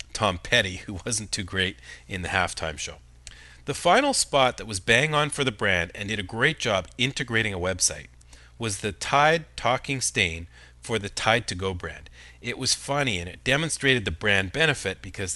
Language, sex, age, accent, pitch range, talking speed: English, male, 40-59, American, 90-130 Hz, 190 wpm